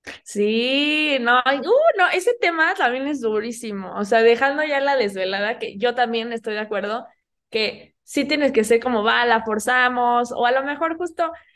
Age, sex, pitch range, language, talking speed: 20-39, female, 220-275 Hz, Spanish, 185 wpm